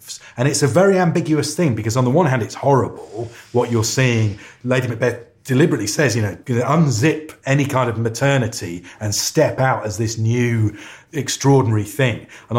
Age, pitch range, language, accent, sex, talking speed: 30-49, 105-130 Hz, English, British, male, 170 wpm